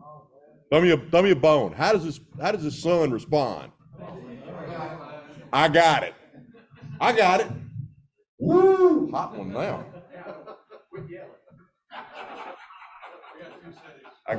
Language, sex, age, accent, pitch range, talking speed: English, male, 50-69, American, 125-175 Hz, 100 wpm